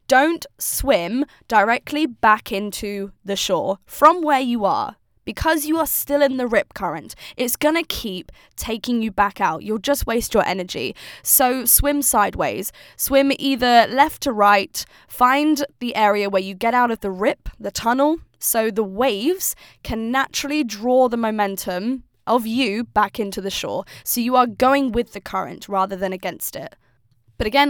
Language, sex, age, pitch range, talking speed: English, female, 10-29, 200-260 Hz, 170 wpm